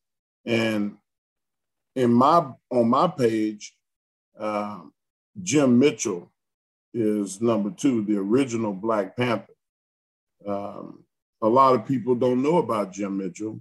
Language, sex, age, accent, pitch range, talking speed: English, male, 40-59, American, 105-125 Hz, 115 wpm